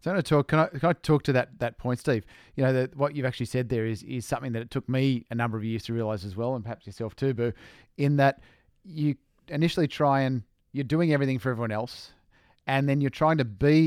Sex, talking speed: male, 265 wpm